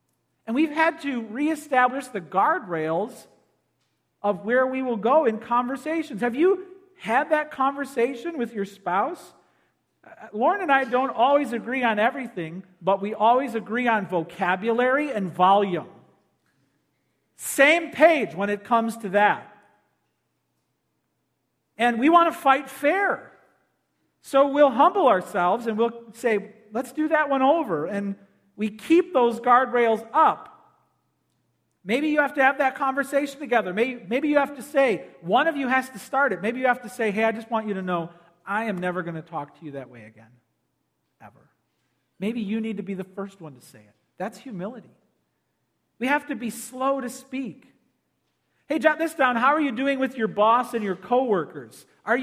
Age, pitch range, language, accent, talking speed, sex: 50-69, 200-275 Hz, English, American, 170 wpm, male